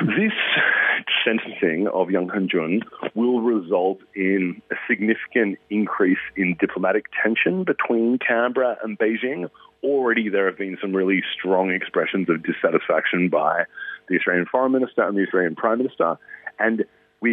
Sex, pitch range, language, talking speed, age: male, 95-120 Hz, English, 140 wpm, 40-59